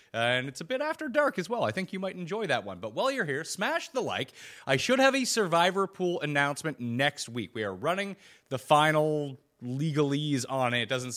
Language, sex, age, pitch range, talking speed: English, male, 30-49, 120-165 Hz, 225 wpm